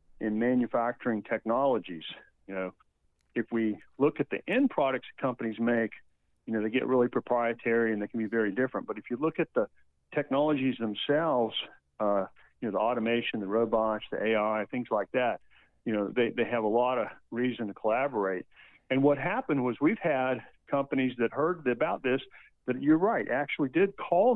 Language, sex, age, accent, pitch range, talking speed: English, male, 50-69, American, 110-130 Hz, 180 wpm